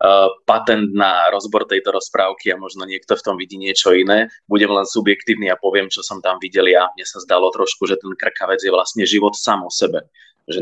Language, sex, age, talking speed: Slovak, male, 20-39, 210 wpm